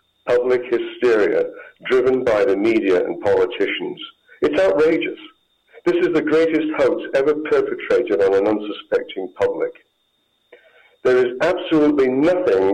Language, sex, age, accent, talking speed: English, male, 60-79, British, 120 wpm